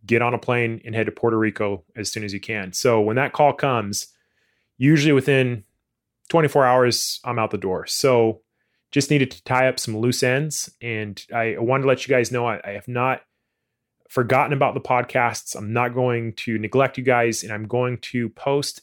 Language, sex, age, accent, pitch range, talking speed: English, male, 30-49, American, 110-130 Hz, 205 wpm